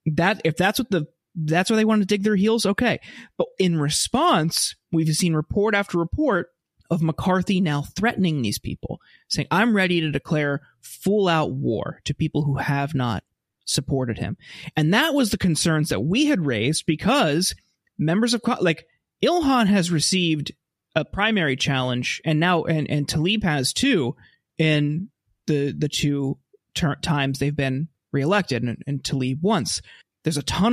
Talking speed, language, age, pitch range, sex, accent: 165 wpm, English, 30-49, 145-190 Hz, male, American